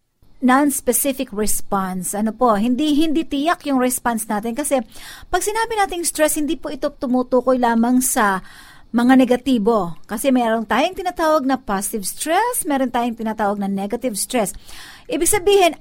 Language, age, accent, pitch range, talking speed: Filipino, 50-69, native, 225-285 Hz, 145 wpm